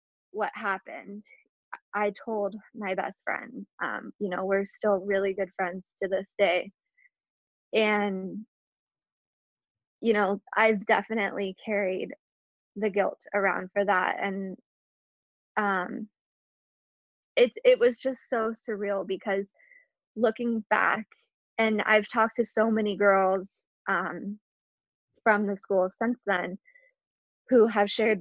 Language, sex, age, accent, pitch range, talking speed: English, female, 20-39, American, 195-225 Hz, 120 wpm